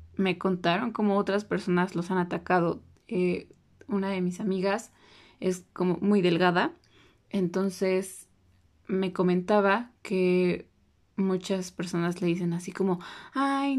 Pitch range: 175-205 Hz